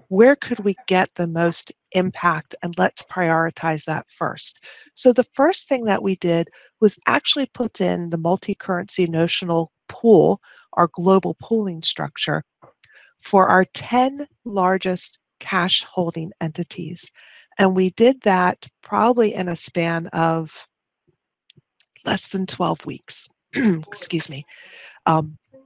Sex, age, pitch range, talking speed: female, 40-59, 165-215 Hz, 125 wpm